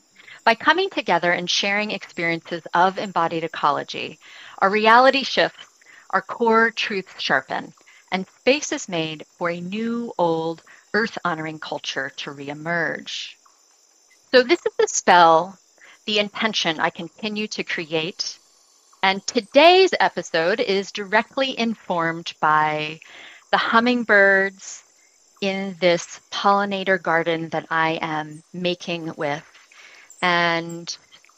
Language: English